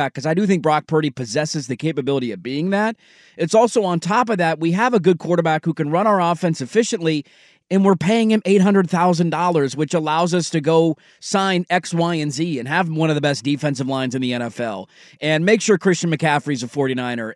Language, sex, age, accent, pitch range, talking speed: English, male, 30-49, American, 140-180 Hz, 215 wpm